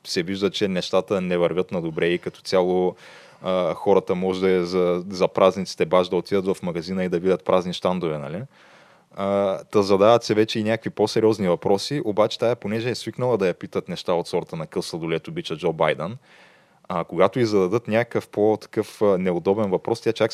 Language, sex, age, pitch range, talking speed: Bulgarian, male, 20-39, 90-110 Hz, 190 wpm